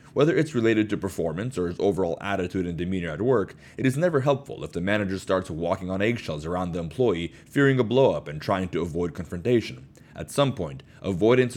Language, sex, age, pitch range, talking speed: English, male, 30-49, 90-130 Hz, 200 wpm